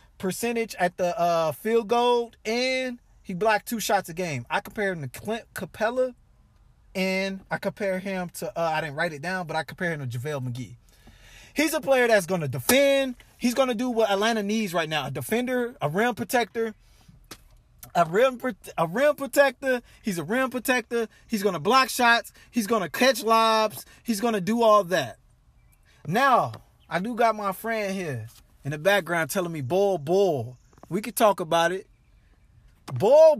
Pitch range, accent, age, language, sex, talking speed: 175-255 Hz, American, 20-39, English, male, 185 wpm